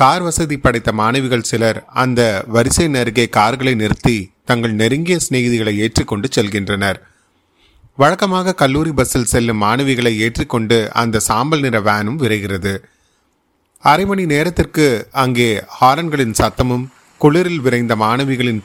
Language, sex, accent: Tamil, male, native